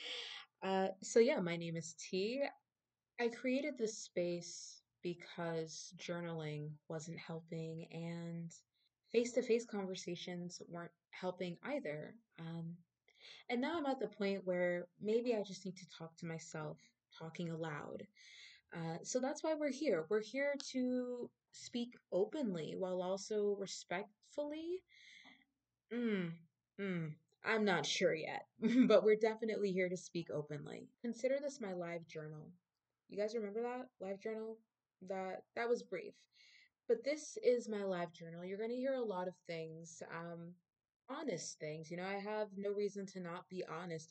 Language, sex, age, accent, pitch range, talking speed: English, female, 20-39, American, 170-235 Hz, 145 wpm